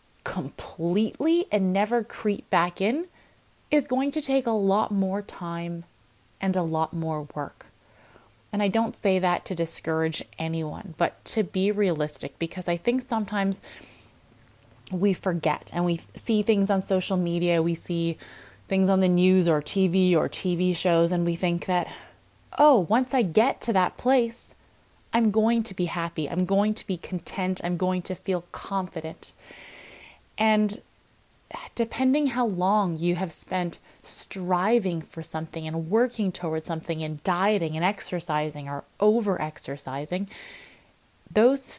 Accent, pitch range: American, 165-210 Hz